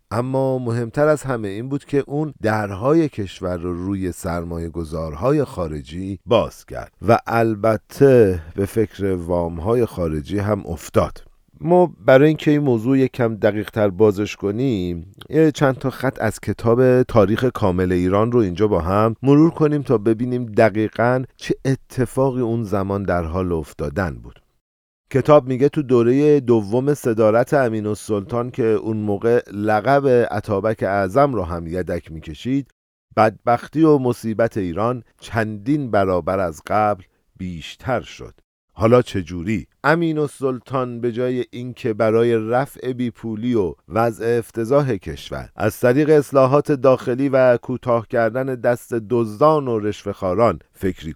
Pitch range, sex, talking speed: 100-130 Hz, male, 135 wpm